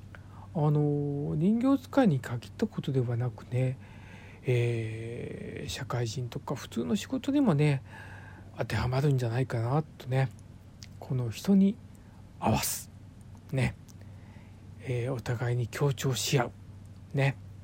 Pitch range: 100-140 Hz